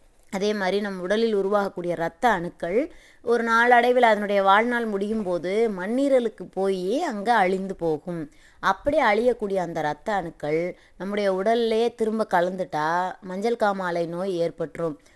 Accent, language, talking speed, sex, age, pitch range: native, Tamil, 125 wpm, female, 20-39, 175-220 Hz